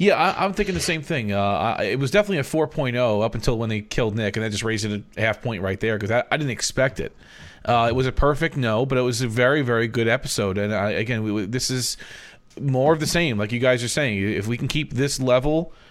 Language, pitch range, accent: English, 115-135 Hz, American